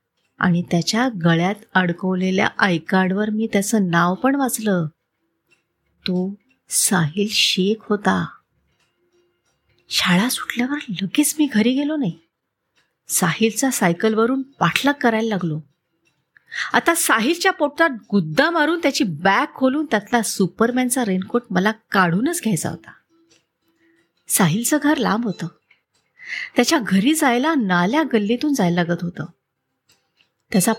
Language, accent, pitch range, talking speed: Marathi, native, 180-275 Hz, 105 wpm